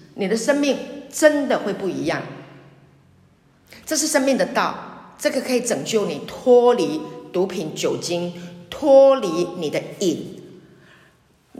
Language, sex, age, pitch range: Chinese, female, 50-69, 185-275 Hz